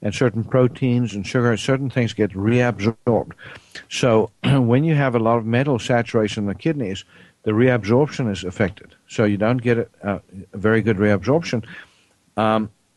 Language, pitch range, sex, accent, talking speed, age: English, 105-125 Hz, male, American, 160 wpm, 60-79